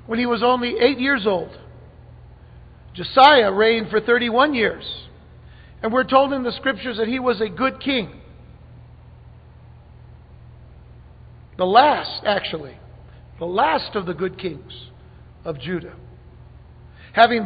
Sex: male